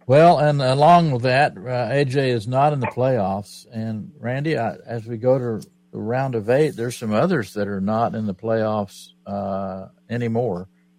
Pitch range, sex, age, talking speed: 95-120 Hz, male, 60-79, 185 wpm